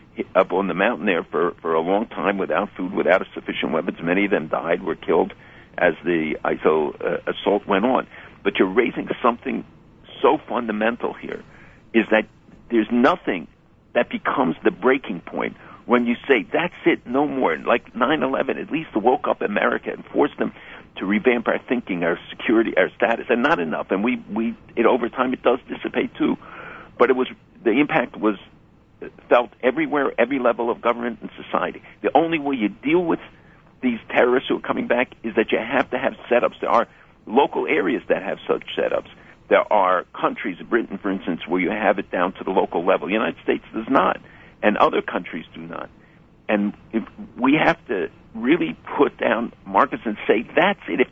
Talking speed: 195 wpm